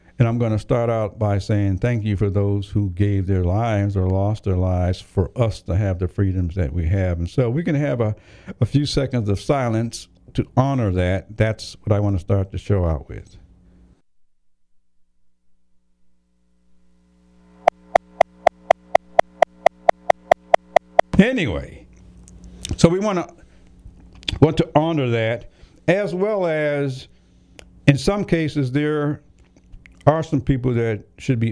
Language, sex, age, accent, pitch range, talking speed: English, male, 60-79, American, 90-135 Hz, 145 wpm